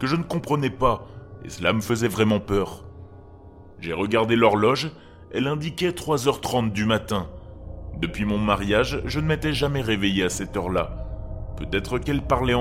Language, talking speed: French, 155 wpm